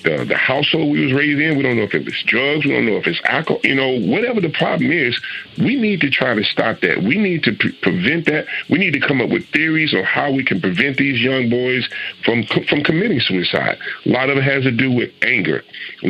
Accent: American